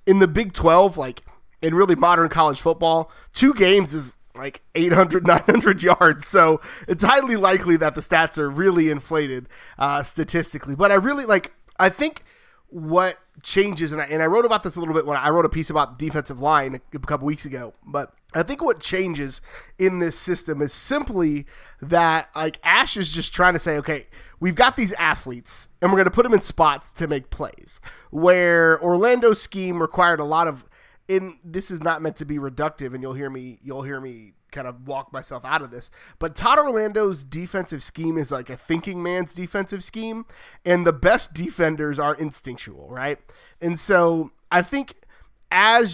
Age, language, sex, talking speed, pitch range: 20-39, English, male, 190 wpm, 150-190 Hz